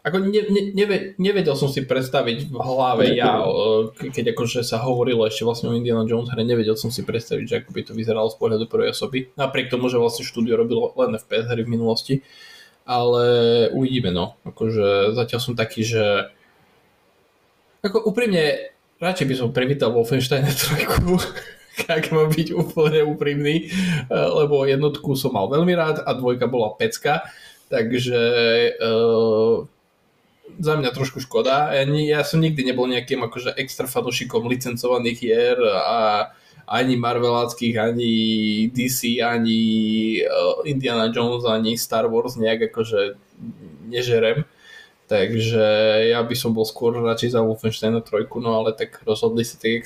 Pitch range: 115-155 Hz